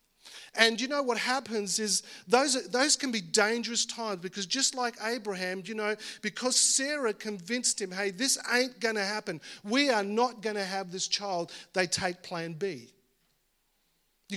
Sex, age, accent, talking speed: male, 40-59, Australian, 175 wpm